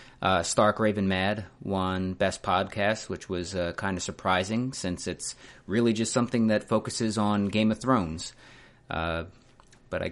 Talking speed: 160 wpm